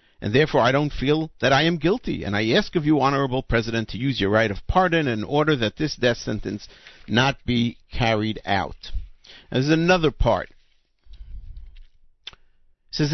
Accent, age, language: American, 50-69, English